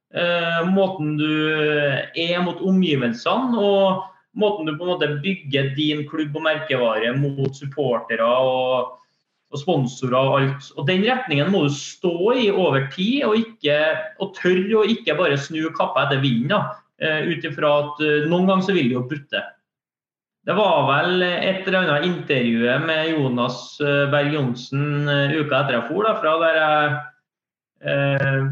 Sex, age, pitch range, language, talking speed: male, 30-49, 135-175 Hz, English, 140 wpm